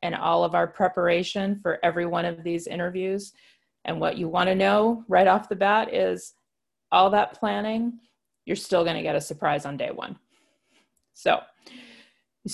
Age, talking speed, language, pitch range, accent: 30-49, 170 wpm, English, 160-205 Hz, American